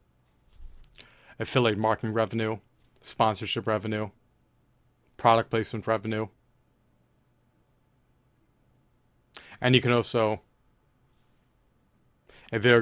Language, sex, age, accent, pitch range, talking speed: English, male, 30-49, American, 105-125 Hz, 60 wpm